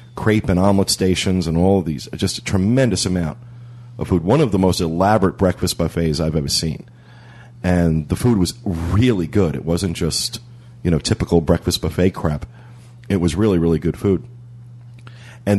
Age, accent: 40-59, American